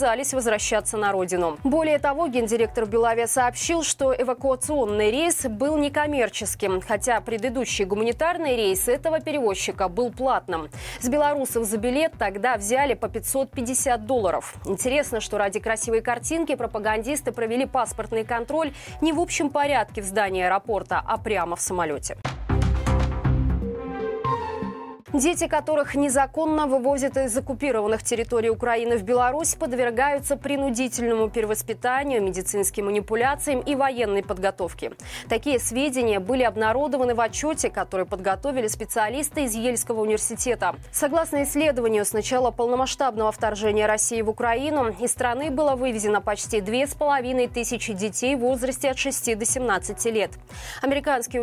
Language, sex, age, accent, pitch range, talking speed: Russian, female, 20-39, native, 215-275 Hz, 125 wpm